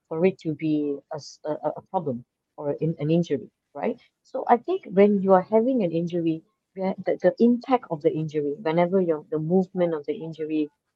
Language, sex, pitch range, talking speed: English, female, 150-195 Hz, 180 wpm